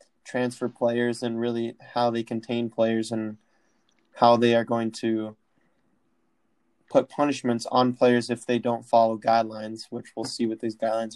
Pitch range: 115-135 Hz